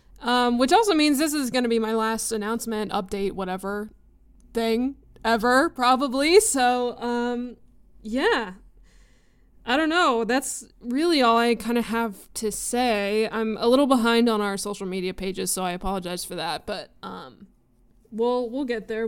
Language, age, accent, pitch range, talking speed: English, 20-39, American, 205-245 Hz, 165 wpm